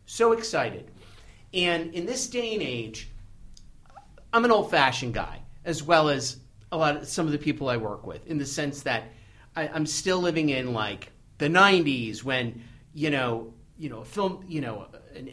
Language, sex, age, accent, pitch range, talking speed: English, male, 50-69, American, 125-170 Hz, 185 wpm